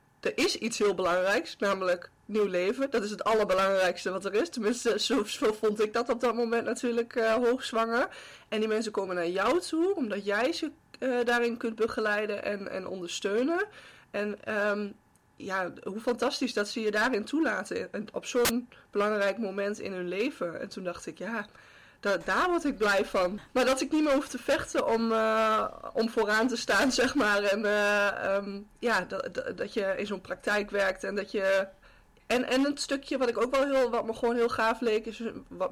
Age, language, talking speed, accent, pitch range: 20-39, Dutch, 200 wpm, Dutch, 195-240 Hz